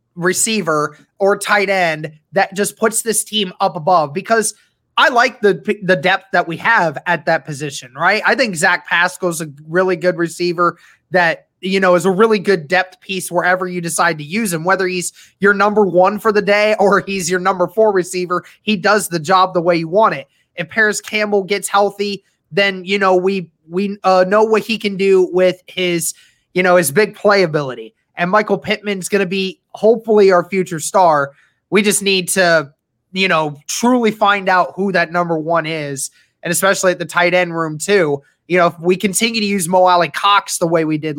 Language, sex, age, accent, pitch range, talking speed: English, male, 20-39, American, 165-200 Hz, 200 wpm